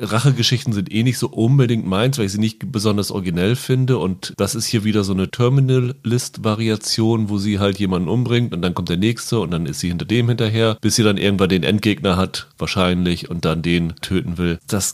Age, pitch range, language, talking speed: 40-59, 95-115 Hz, German, 215 wpm